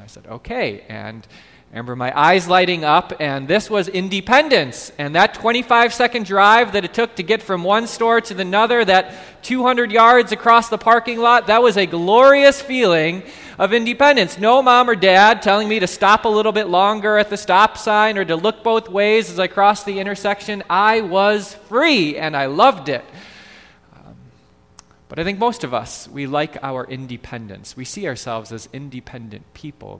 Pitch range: 130-215 Hz